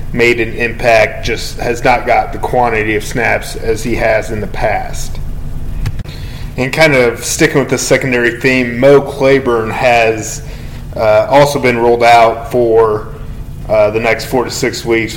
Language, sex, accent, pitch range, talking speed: English, male, American, 115-130 Hz, 160 wpm